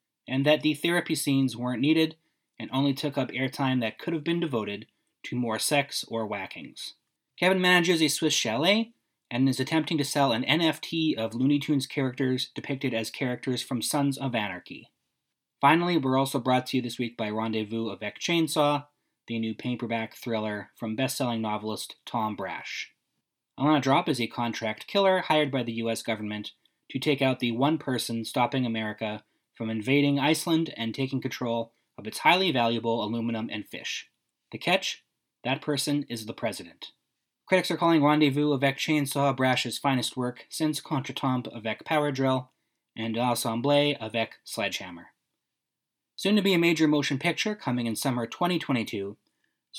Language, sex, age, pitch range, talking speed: English, male, 20-39, 115-150 Hz, 160 wpm